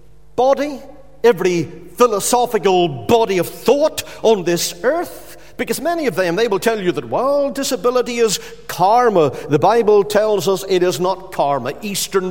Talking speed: 150 wpm